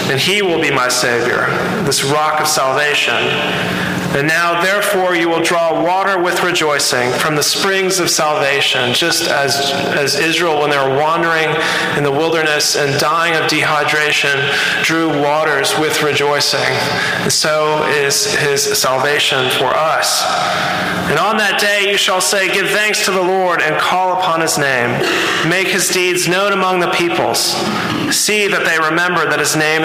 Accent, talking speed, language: American, 165 wpm, English